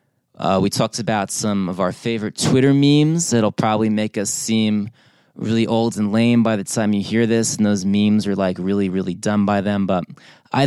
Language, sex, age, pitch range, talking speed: English, male, 20-39, 100-120 Hz, 210 wpm